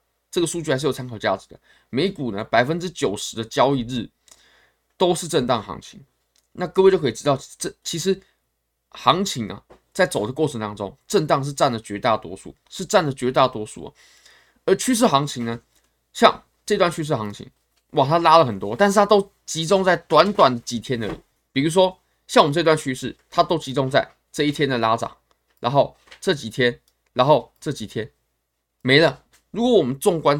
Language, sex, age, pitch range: Chinese, male, 20-39, 115-165 Hz